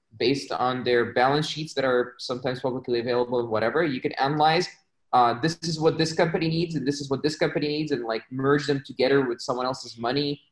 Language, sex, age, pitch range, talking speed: English, male, 20-39, 120-145 Hz, 215 wpm